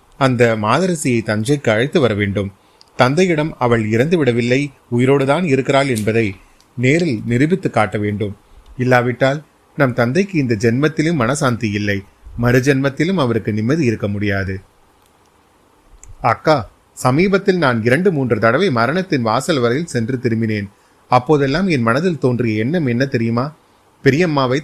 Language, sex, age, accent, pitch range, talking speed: Tamil, male, 30-49, native, 115-145 Hz, 115 wpm